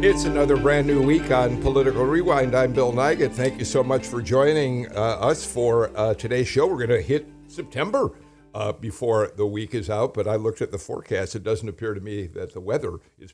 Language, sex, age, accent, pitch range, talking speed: English, male, 60-79, American, 105-140 Hz, 220 wpm